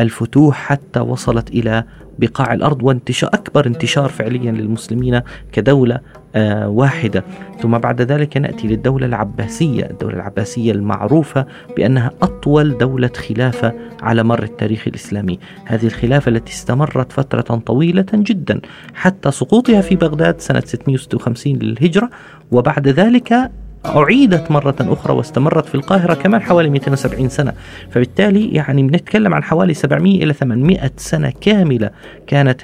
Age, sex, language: 30-49, male, Arabic